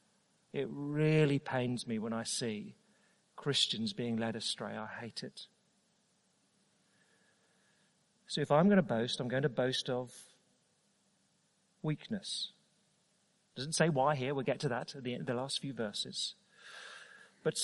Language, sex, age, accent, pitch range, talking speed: English, male, 40-59, British, 155-205 Hz, 145 wpm